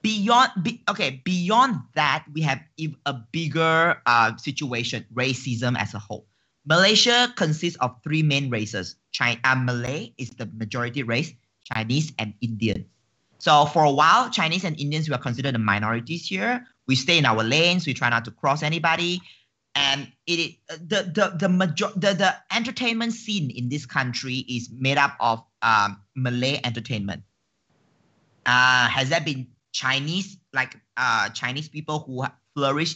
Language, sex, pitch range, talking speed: English, male, 120-160 Hz, 160 wpm